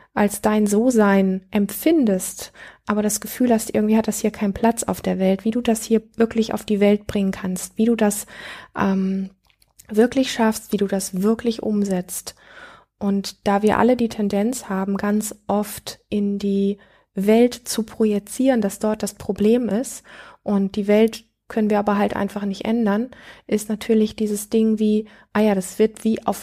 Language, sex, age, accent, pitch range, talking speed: German, female, 20-39, German, 195-225 Hz, 175 wpm